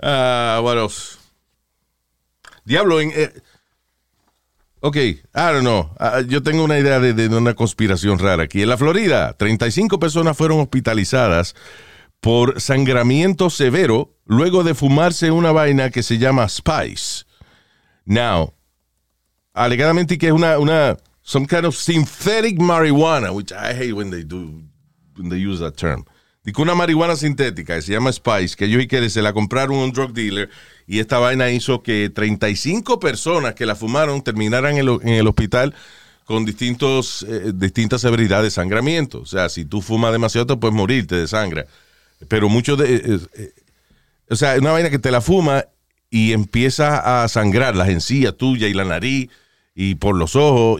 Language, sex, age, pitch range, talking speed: Spanish, male, 50-69, 100-140 Hz, 170 wpm